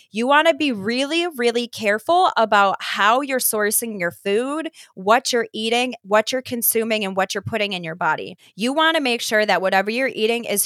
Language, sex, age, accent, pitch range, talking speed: English, female, 20-39, American, 190-225 Hz, 205 wpm